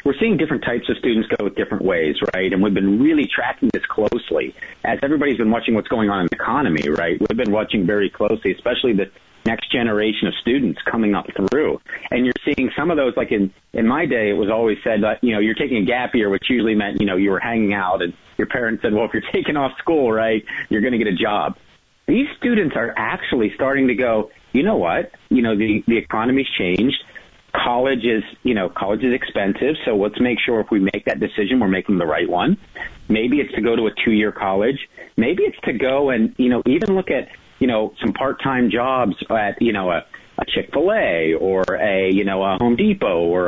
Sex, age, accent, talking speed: male, 40-59, American, 230 wpm